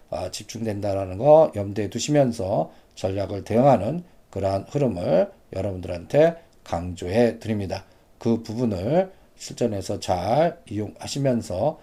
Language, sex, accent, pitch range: Korean, male, native, 100-150 Hz